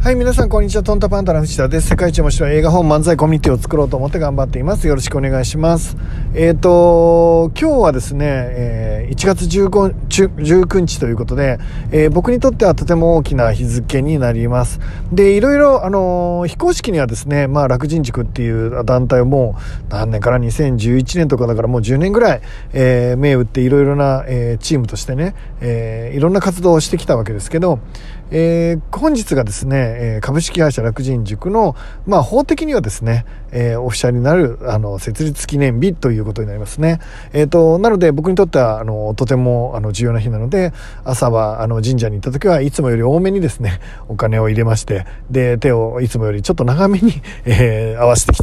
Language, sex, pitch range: Japanese, male, 115-170 Hz